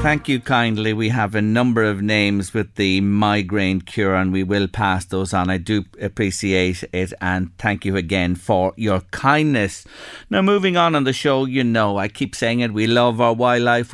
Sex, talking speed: male, 200 wpm